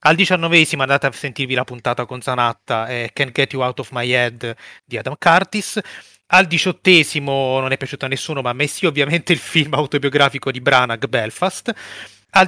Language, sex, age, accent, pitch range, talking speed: Italian, male, 30-49, native, 125-155 Hz, 185 wpm